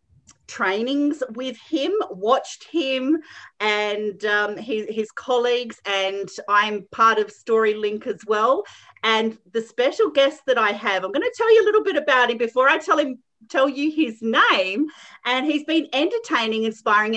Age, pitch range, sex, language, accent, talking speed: 40-59, 210-290 Hz, female, English, Australian, 165 wpm